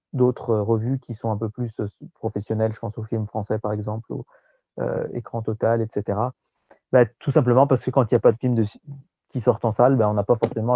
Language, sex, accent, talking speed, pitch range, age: French, male, French, 230 wpm, 110-135 Hz, 30-49